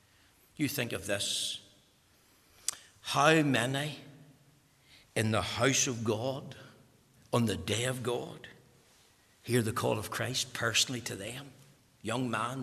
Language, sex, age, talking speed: English, male, 60-79, 125 wpm